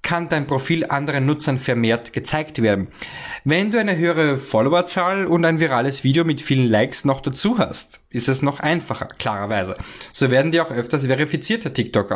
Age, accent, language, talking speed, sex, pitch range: 20-39, German, German, 175 wpm, male, 115-145 Hz